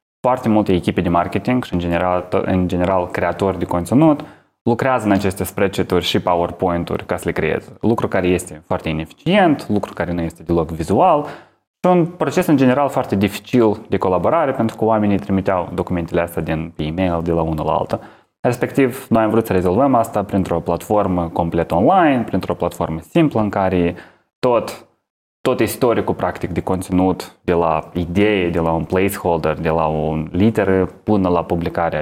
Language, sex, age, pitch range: Romanian, male, 20-39, 85-110 Hz